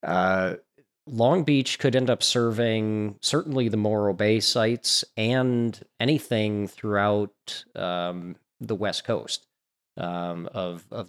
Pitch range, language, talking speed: 100-125 Hz, English, 120 wpm